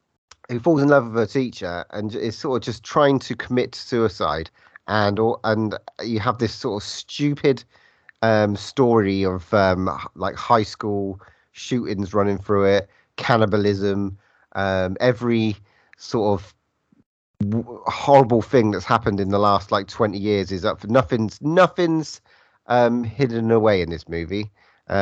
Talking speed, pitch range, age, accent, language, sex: 145 wpm, 100-120 Hz, 30-49, British, English, male